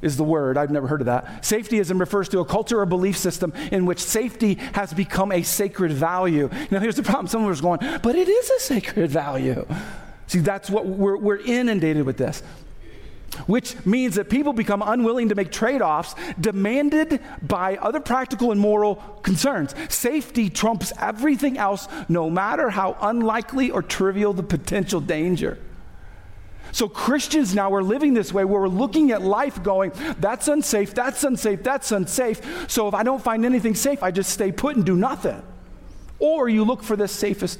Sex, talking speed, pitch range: male, 180 wpm, 185-235 Hz